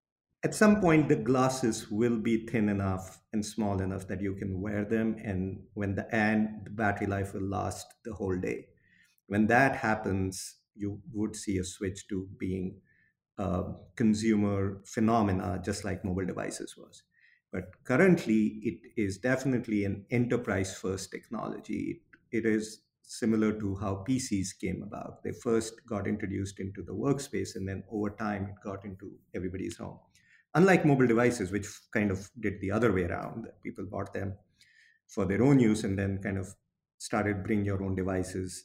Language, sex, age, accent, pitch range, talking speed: English, male, 50-69, Indian, 95-115 Hz, 170 wpm